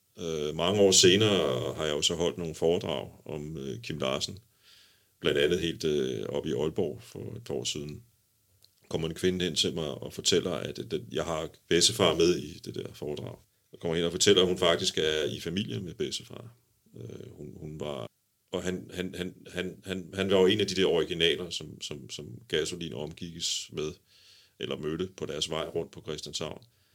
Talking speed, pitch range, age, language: 195 wpm, 80-100 Hz, 40-59, Danish